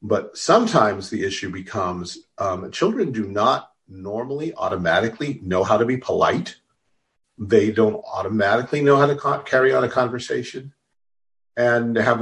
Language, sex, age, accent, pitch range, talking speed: English, male, 50-69, American, 105-155 Hz, 135 wpm